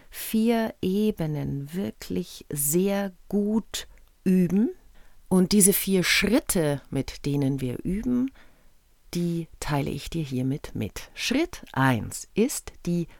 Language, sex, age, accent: German, female, 50-69, German